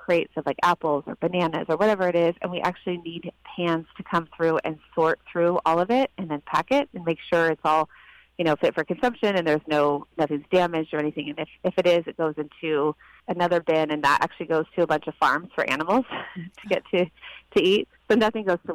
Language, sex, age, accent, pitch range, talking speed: English, female, 30-49, American, 155-180 Hz, 235 wpm